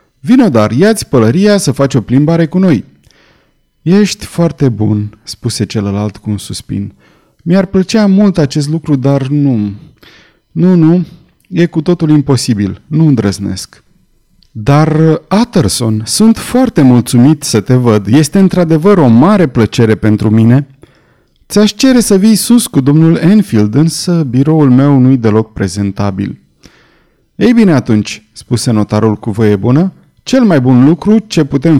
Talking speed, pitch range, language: 140 wpm, 110-170 Hz, Romanian